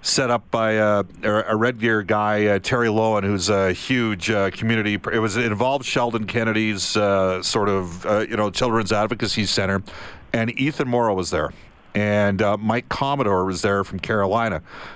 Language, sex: English, male